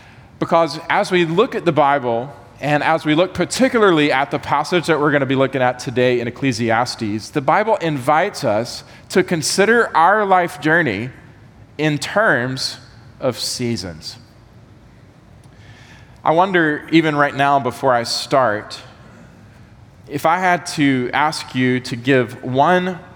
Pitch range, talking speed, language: 115-150 Hz, 145 wpm, English